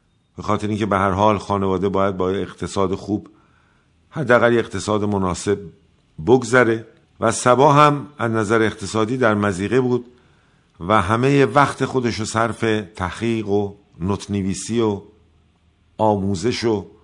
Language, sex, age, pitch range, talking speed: Persian, male, 50-69, 100-125 Hz, 125 wpm